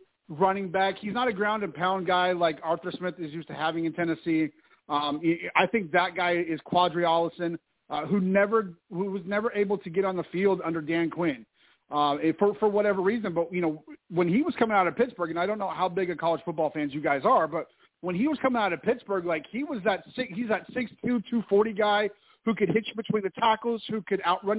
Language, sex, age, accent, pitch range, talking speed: English, male, 40-59, American, 175-220 Hz, 240 wpm